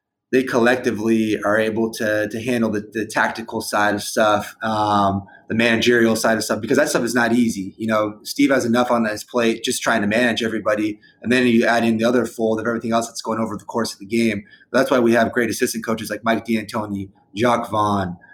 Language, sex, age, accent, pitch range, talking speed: English, male, 20-39, American, 110-120 Hz, 230 wpm